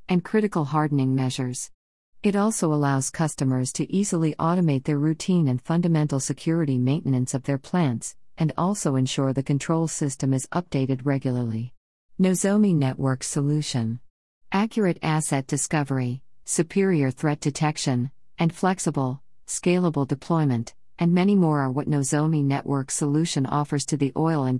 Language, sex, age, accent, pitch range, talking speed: English, female, 50-69, American, 135-160 Hz, 135 wpm